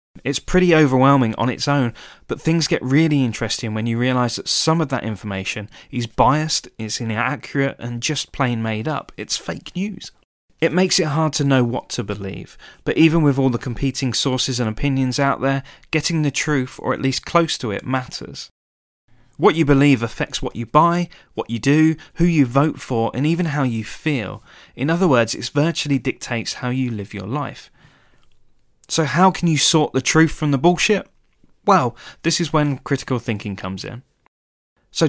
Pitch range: 115-155 Hz